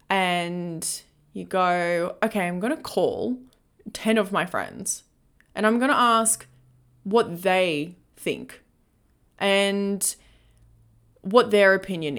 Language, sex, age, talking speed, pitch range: English, female, 20-39, 120 wpm, 170-230 Hz